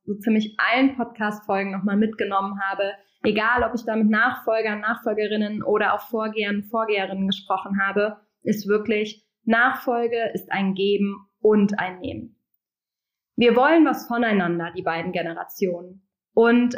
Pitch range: 200-230 Hz